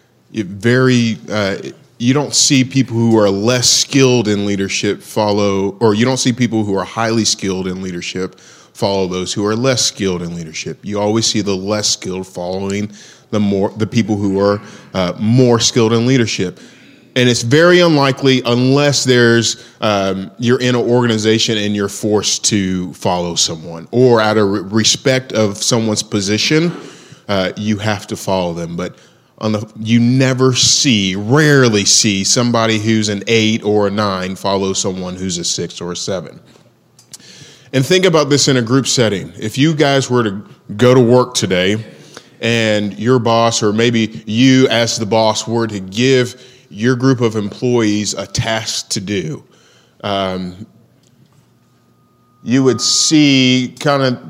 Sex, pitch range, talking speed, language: male, 100-125 Hz, 160 wpm, English